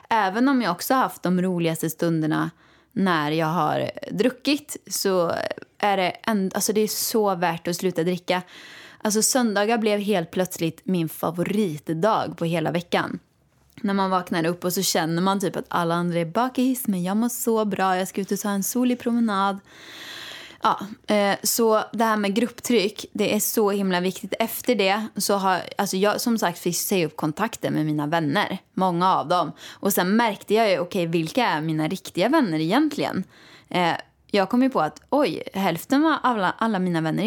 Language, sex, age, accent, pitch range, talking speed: Swedish, female, 20-39, native, 170-220 Hz, 185 wpm